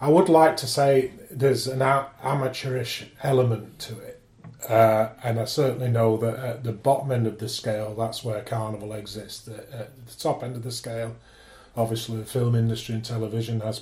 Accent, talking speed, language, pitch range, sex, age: British, 185 wpm, English, 110-125 Hz, male, 40-59